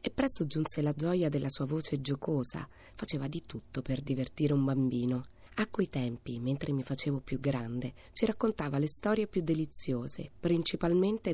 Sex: female